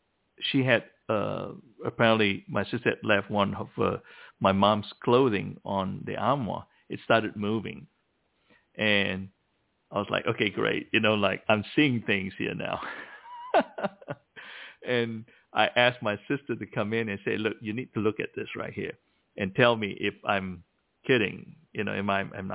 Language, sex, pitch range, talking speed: English, male, 105-130 Hz, 160 wpm